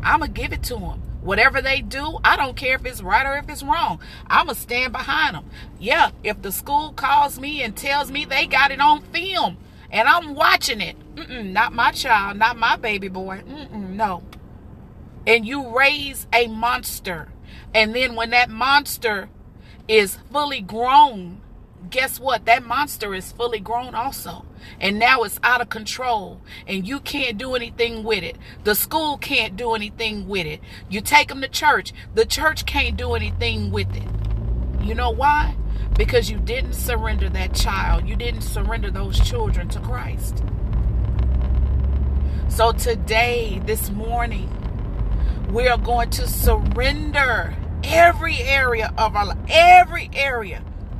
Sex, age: female, 40-59